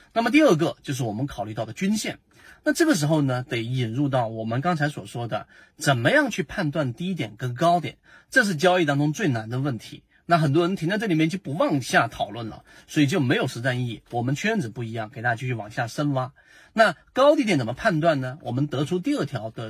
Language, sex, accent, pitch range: Chinese, male, native, 130-195 Hz